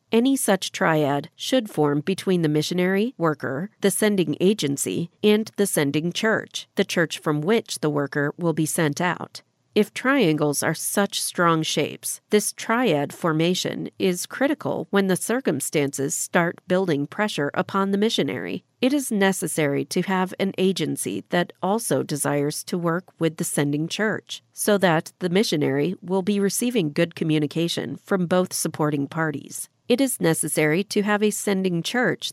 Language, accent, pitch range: English, American, 155-205 Hz